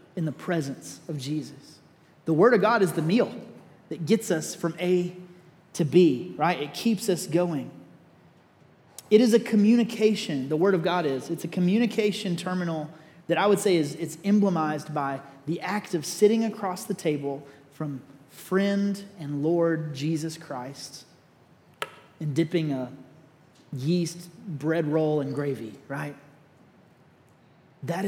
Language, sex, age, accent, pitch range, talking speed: English, male, 30-49, American, 150-185 Hz, 145 wpm